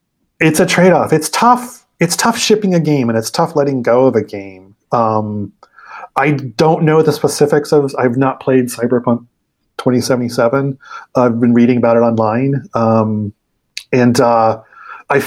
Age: 30-49